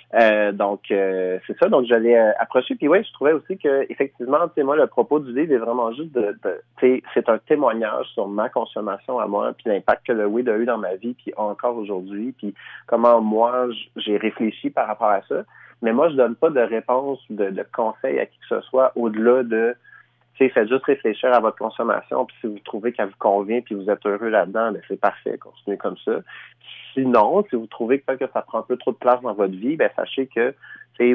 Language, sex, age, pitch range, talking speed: French, male, 30-49, 105-130 Hz, 235 wpm